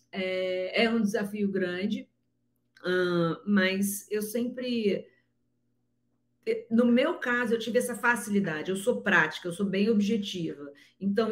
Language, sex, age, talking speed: Portuguese, female, 40-59, 115 wpm